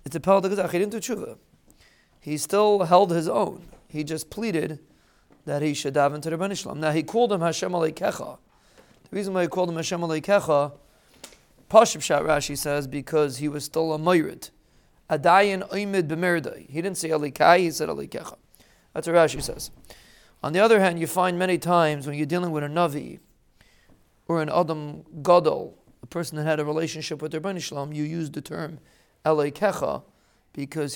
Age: 40-59